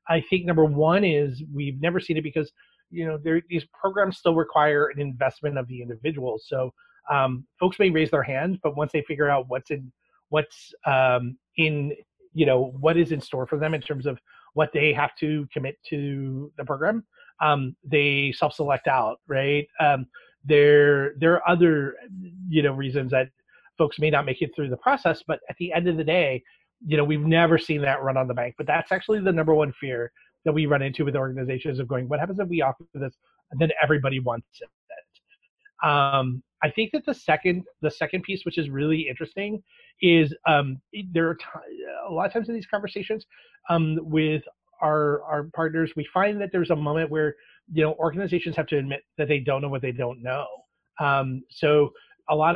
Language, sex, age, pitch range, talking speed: English, male, 30-49, 135-170 Hz, 205 wpm